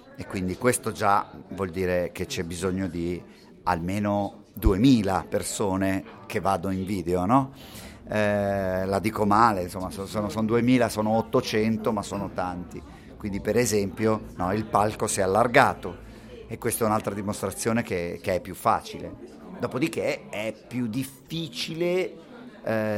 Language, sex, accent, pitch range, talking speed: Italian, male, native, 95-130 Hz, 145 wpm